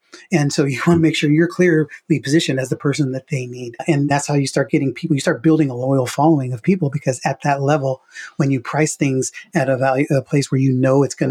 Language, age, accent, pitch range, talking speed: English, 30-49, American, 130-155 Hz, 260 wpm